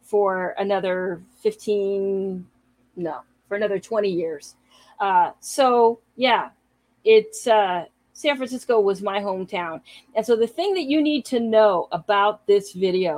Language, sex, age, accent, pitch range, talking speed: English, female, 40-59, American, 185-235 Hz, 135 wpm